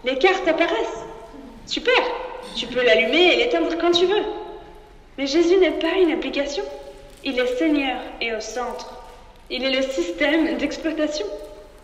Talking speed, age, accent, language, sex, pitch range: 145 wpm, 20-39, French, French, female, 280-400 Hz